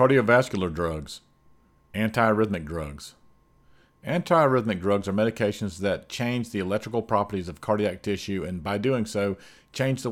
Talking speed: 130 wpm